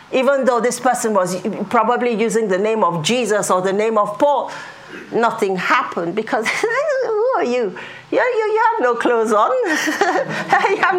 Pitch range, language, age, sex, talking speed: 185-255 Hz, English, 40-59, female, 160 wpm